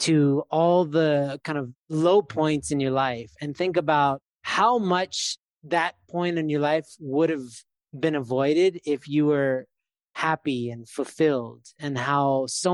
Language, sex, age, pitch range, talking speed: English, male, 20-39, 135-165 Hz, 155 wpm